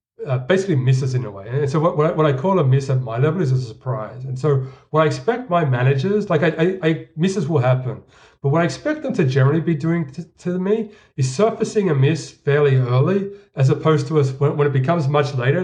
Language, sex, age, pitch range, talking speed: English, male, 30-49, 130-170 Hz, 240 wpm